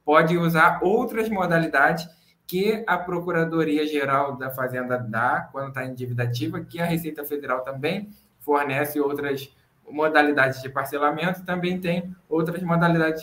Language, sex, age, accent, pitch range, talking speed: Portuguese, male, 20-39, Brazilian, 145-190 Hz, 135 wpm